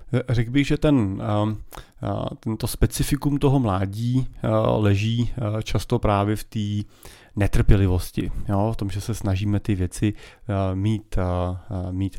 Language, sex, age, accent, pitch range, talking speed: Czech, male, 30-49, native, 95-110 Hz, 120 wpm